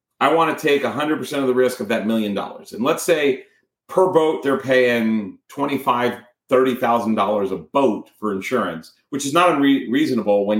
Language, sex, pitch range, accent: English, male, 115-170 Hz, American